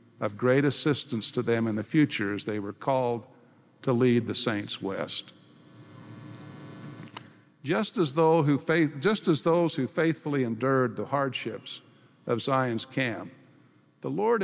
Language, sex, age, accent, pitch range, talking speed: English, male, 50-69, American, 120-155 Hz, 140 wpm